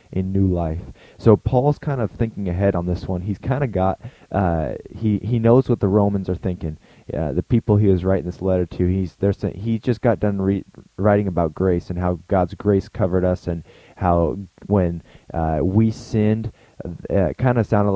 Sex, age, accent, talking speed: male, 20-39, American, 205 wpm